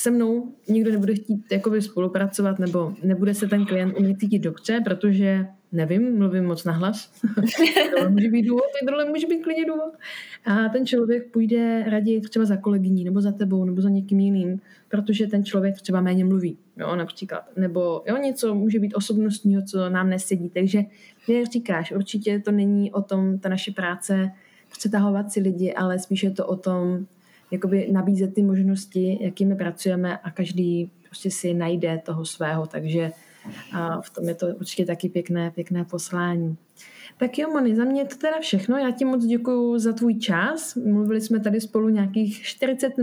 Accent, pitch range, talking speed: native, 185-225 Hz, 170 wpm